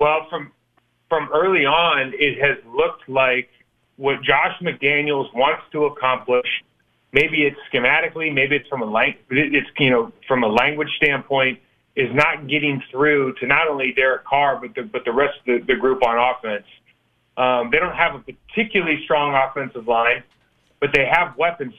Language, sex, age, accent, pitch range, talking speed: English, male, 30-49, American, 120-150 Hz, 175 wpm